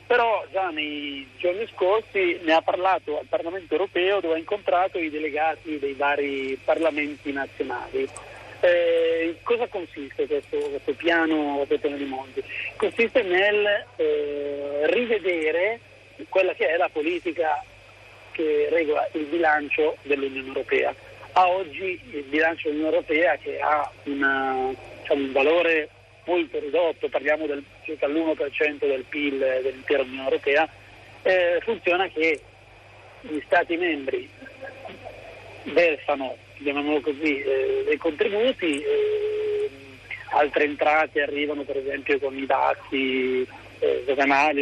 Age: 40-59